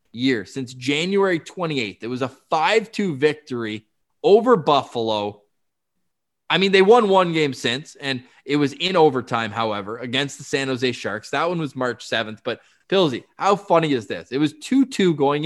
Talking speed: 170 wpm